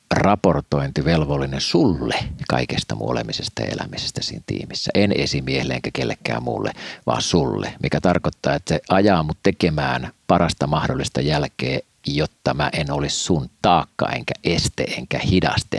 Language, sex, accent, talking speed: Finnish, male, native, 135 wpm